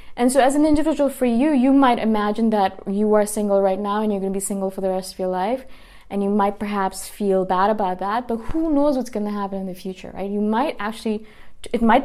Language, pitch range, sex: English, 195-240 Hz, female